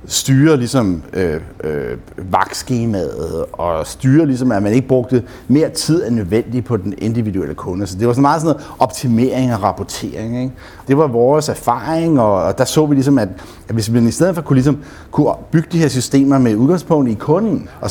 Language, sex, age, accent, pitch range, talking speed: Danish, male, 60-79, native, 120-155 Hz, 200 wpm